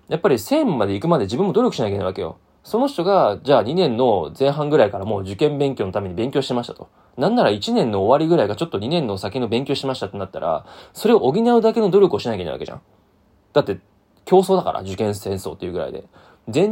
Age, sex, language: 20-39, male, Japanese